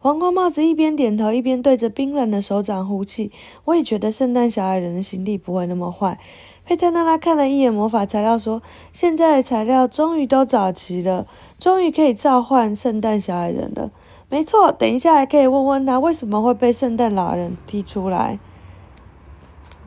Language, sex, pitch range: Chinese, female, 200-275 Hz